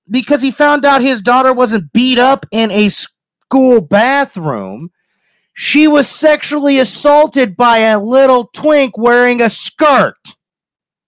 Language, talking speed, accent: English, 130 wpm, American